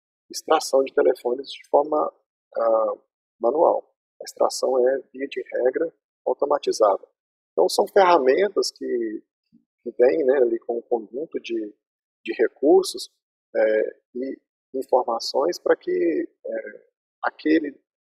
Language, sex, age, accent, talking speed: Portuguese, male, 40-59, Brazilian, 105 wpm